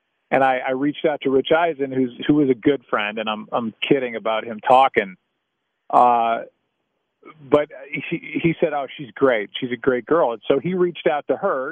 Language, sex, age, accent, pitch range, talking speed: English, male, 40-59, American, 130-165 Hz, 205 wpm